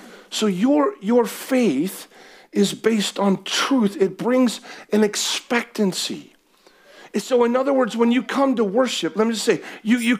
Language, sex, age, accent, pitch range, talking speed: English, male, 50-69, American, 215-270 Hz, 165 wpm